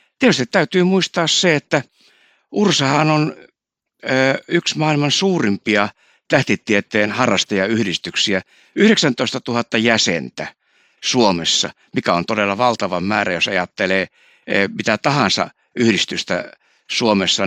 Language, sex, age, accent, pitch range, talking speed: Finnish, male, 60-79, native, 110-140 Hz, 95 wpm